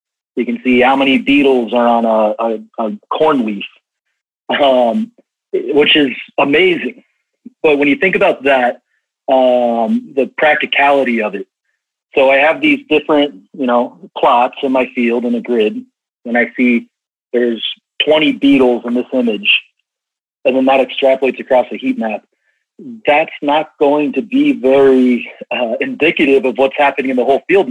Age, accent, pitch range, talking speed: 40-59, American, 125-165 Hz, 160 wpm